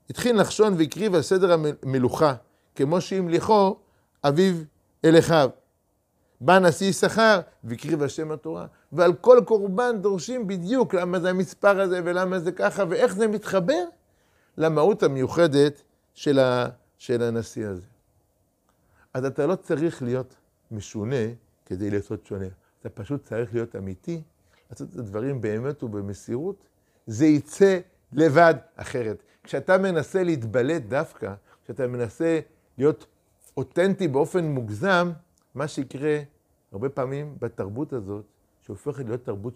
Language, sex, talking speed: Hebrew, male, 120 wpm